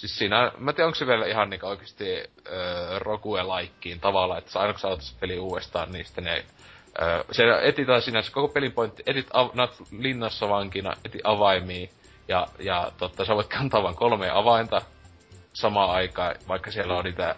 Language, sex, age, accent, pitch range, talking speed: Finnish, male, 30-49, native, 95-125 Hz, 160 wpm